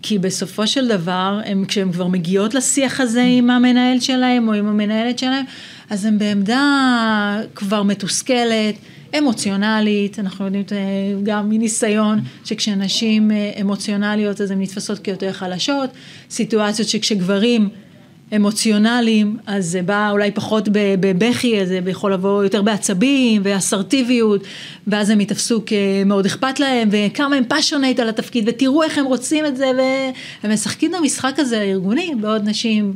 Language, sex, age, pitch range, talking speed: Hebrew, female, 30-49, 195-230 Hz, 130 wpm